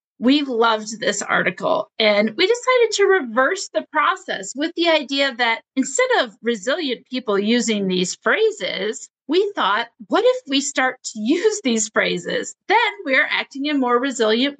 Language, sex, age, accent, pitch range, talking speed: English, female, 40-59, American, 230-335 Hz, 160 wpm